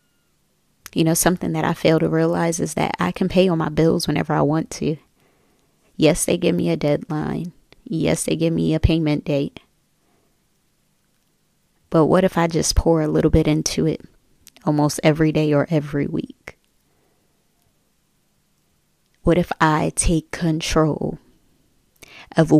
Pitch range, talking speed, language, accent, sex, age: 155-170 Hz, 150 wpm, English, American, female, 20-39